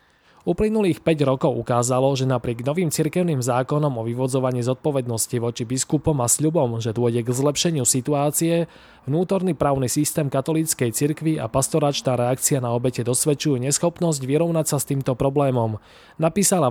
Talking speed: 140 wpm